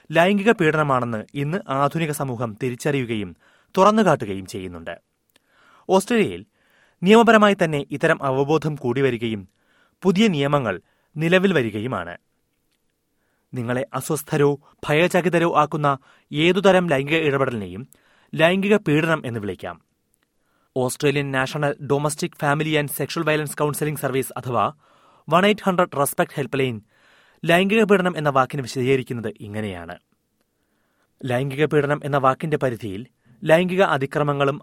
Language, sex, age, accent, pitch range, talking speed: Malayalam, male, 30-49, native, 130-165 Hz, 95 wpm